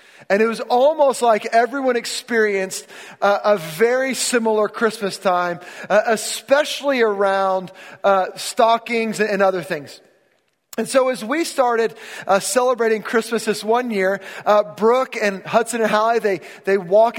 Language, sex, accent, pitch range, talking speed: English, male, American, 200-240 Hz, 140 wpm